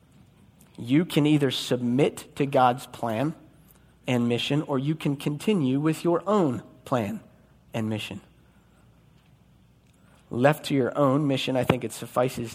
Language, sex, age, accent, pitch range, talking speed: English, male, 40-59, American, 120-150 Hz, 135 wpm